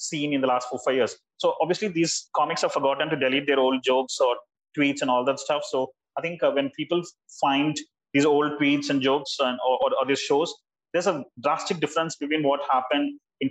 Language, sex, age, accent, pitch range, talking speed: English, male, 30-49, Indian, 135-175 Hz, 220 wpm